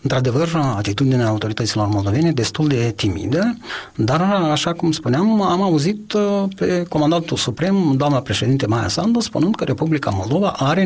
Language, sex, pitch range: Romanian, male, 120-170 Hz